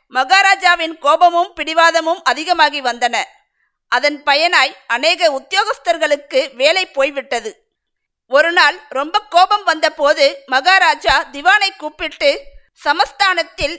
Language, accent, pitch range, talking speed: Tamil, native, 285-360 Hz, 90 wpm